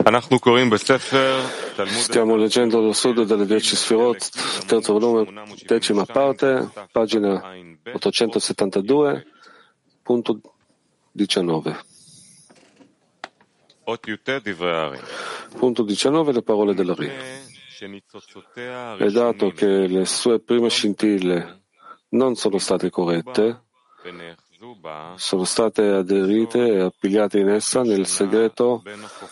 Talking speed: 85 wpm